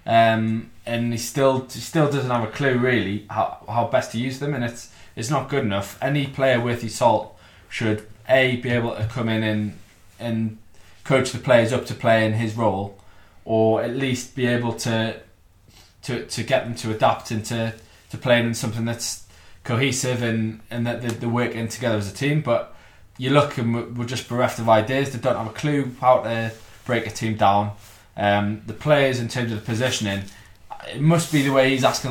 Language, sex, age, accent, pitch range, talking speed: English, male, 20-39, British, 110-125 Hz, 205 wpm